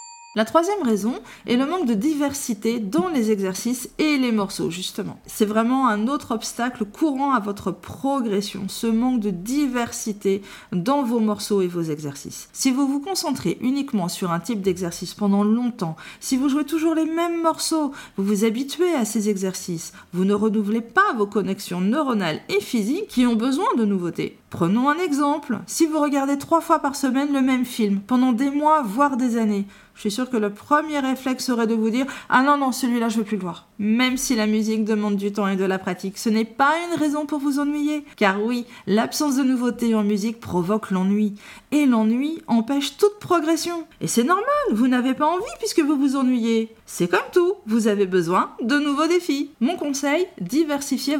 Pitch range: 210-290 Hz